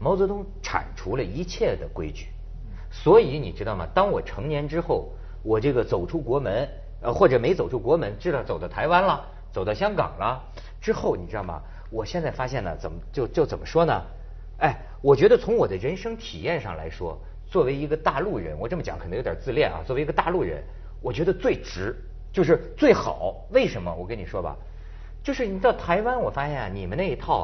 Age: 50-69